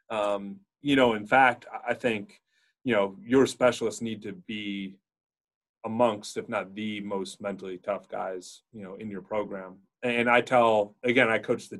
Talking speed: 175 wpm